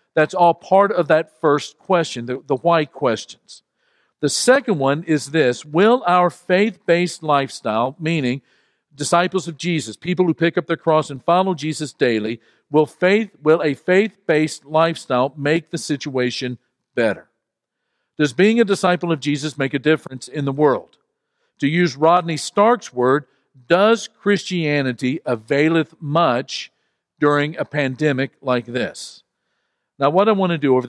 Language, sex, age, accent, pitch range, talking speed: English, male, 50-69, American, 130-170 Hz, 145 wpm